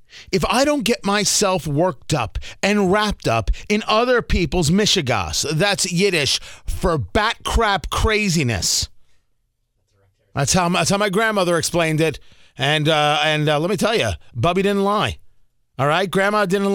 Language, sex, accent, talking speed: English, male, American, 150 wpm